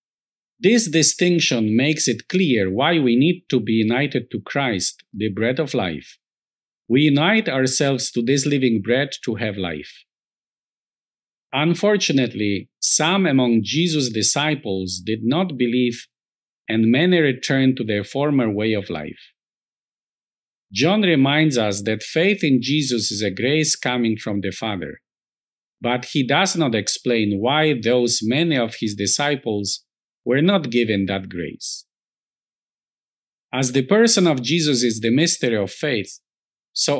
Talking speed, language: 140 wpm, English